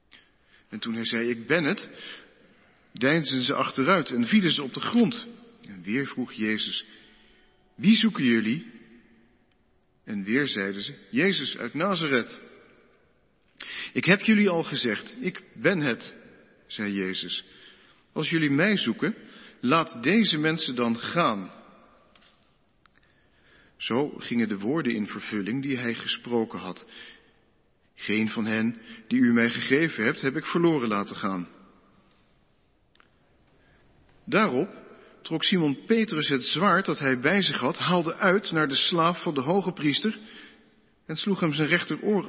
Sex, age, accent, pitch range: male, 50-69, Dutch, 115-175 Hz